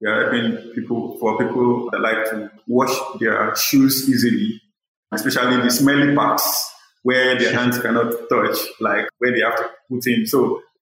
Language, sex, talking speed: English, male, 155 wpm